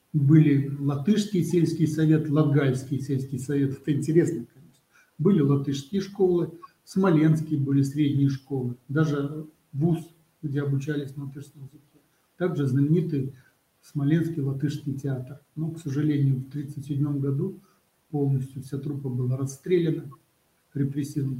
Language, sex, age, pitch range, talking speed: Russian, male, 60-79, 140-160 Hz, 120 wpm